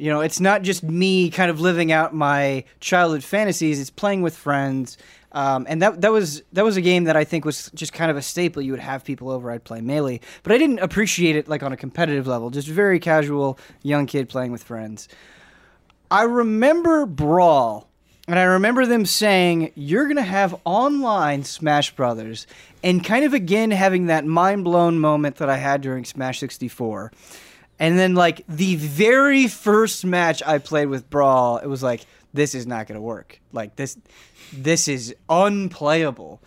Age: 20-39